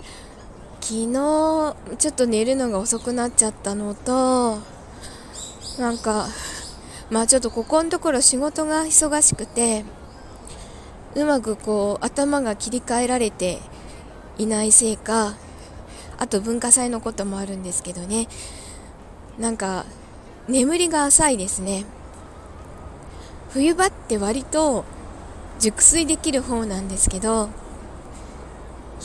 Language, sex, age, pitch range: Japanese, female, 20-39, 205-265 Hz